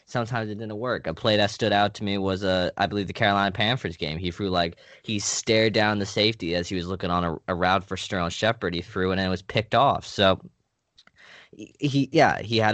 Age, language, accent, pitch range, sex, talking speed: 20-39, English, American, 95-115 Hz, male, 240 wpm